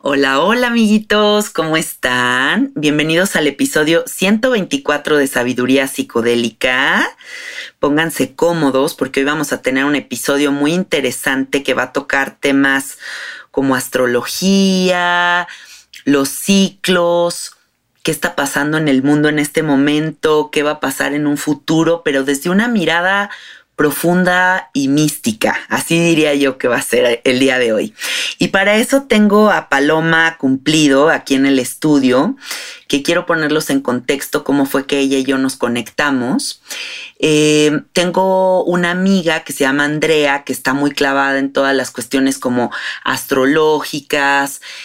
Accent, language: Mexican, Spanish